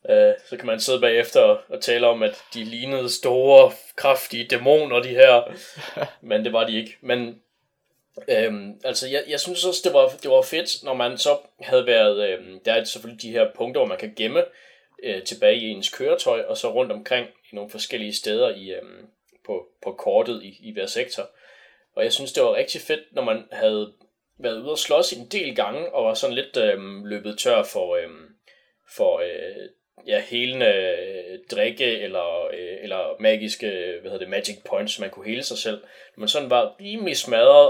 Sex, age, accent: male, 20-39, native